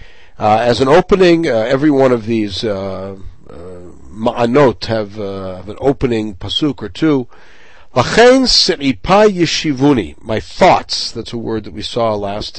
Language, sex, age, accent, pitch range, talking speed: English, male, 60-79, American, 105-150 Hz, 140 wpm